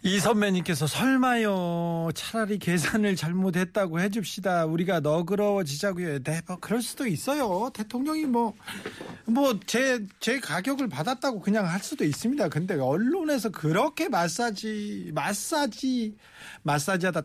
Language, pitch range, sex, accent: Korean, 170-230 Hz, male, native